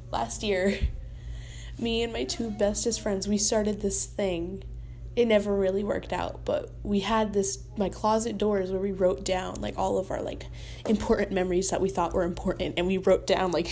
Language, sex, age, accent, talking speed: English, female, 10-29, American, 195 wpm